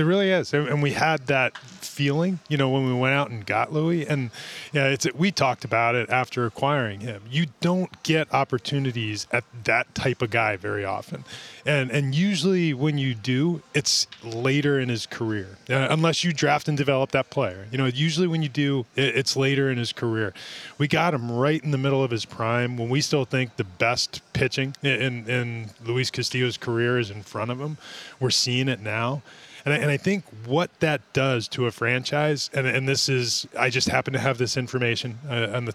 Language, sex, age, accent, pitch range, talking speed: English, male, 20-39, American, 120-145 Hz, 210 wpm